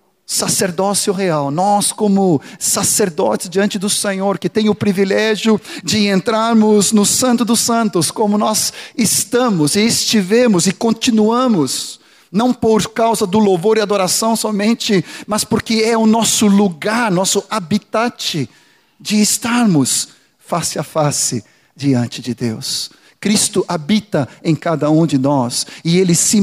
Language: Portuguese